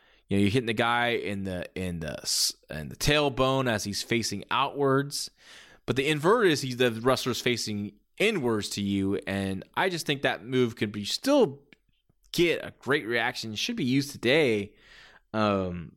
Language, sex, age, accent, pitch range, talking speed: English, male, 20-39, American, 100-140 Hz, 175 wpm